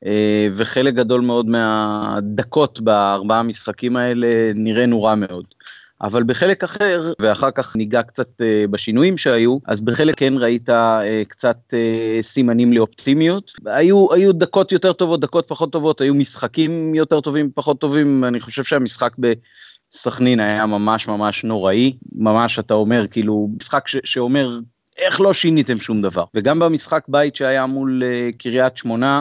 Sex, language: male, Hebrew